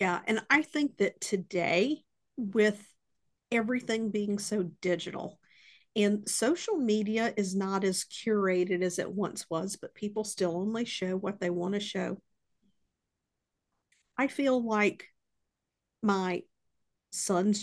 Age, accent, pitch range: 50-69, American, 190-225 Hz